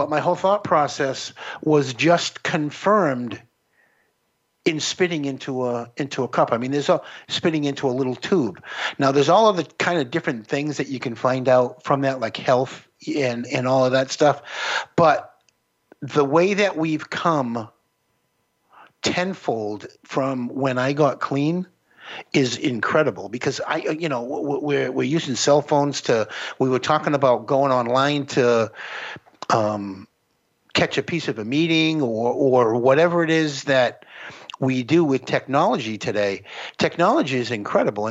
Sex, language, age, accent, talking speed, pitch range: male, English, 50-69, American, 155 wpm, 125-165 Hz